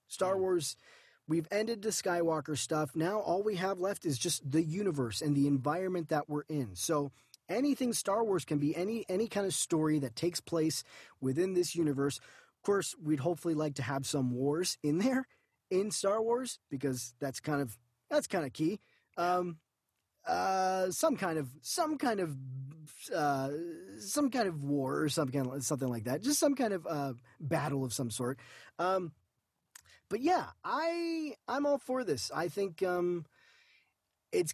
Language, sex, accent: English, male, American